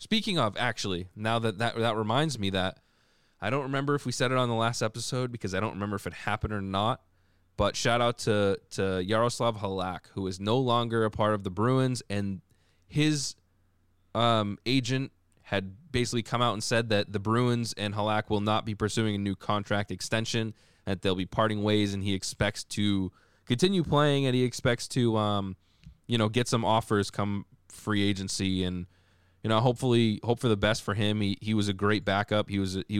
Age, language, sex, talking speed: 20-39, English, male, 205 wpm